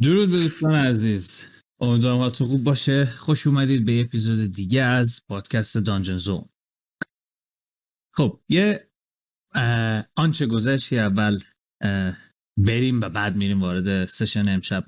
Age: 30-49